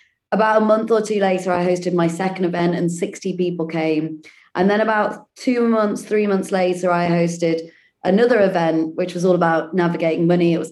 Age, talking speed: 20-39, 195 wpm